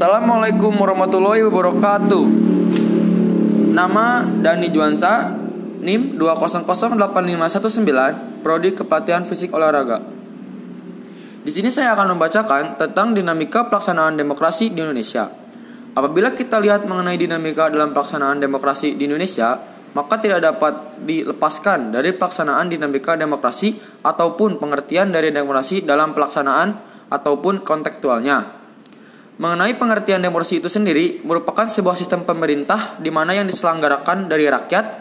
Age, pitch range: 20-39, 155-210 Hz